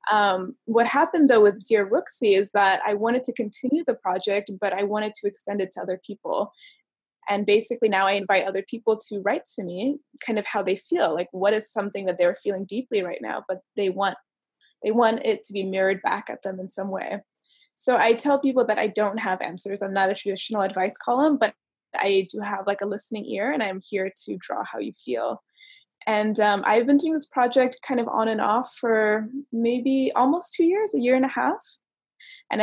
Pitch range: 200-255 Hz